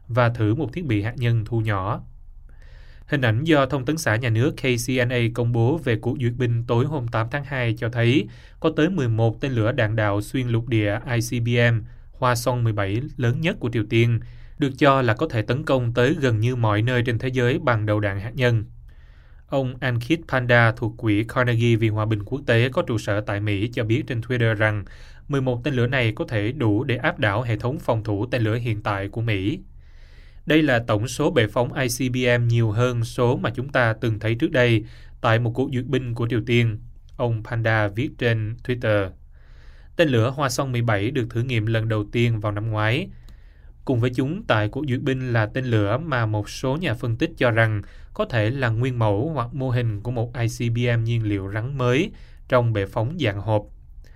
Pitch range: 105-125 Hz